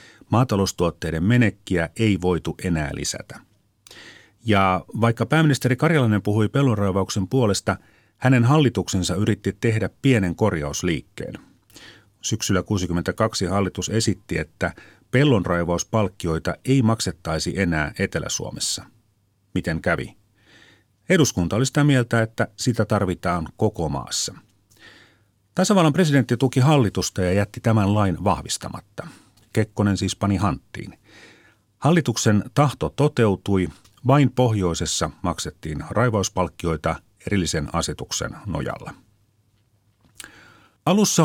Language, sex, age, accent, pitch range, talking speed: Finnish, male, 40-59, native, 95-120 Hz, 95 wpm